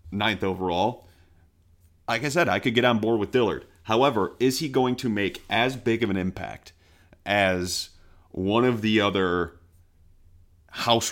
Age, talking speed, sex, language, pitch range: 40-59, 155 wpm, male, English, 85-105 Hz